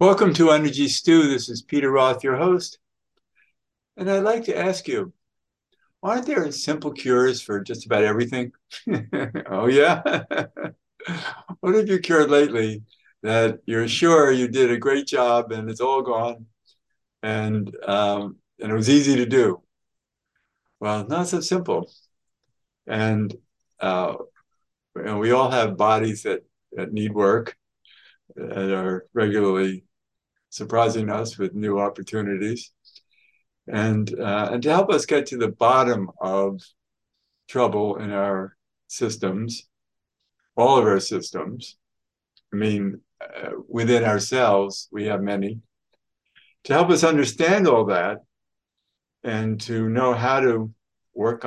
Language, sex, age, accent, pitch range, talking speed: English, male, 60-79, American, 105-135 Hz, 130 wpm